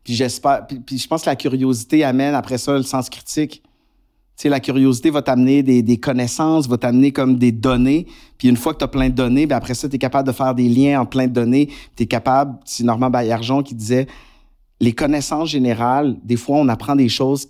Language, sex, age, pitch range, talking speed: French, male, 50-69, 120-135 Hz, 235 wpm